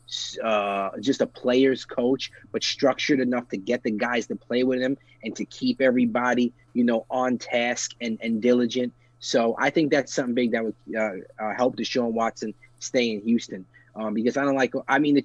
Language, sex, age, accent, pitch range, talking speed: English, male, 20-39, American, 110-125 Hz, 205 wpm